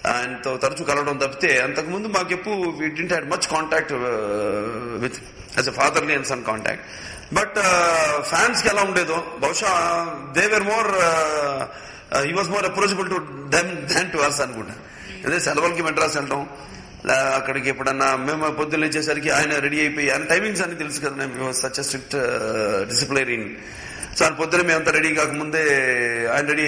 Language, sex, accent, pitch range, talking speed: Telugu, male, native, 135-170 Hz, 110 wpm